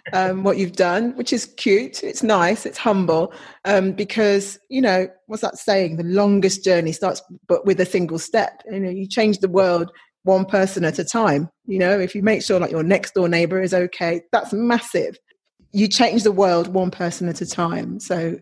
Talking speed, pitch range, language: 205 wpm, 175-215 Hz, English